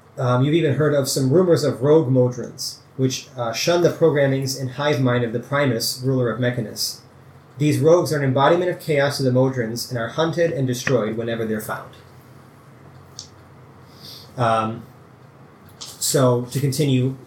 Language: English